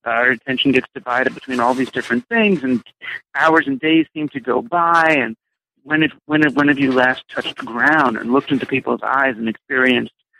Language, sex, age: English, male, 50-69